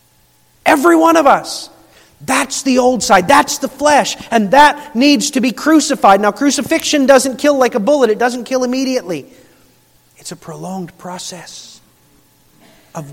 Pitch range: 170-235 Hz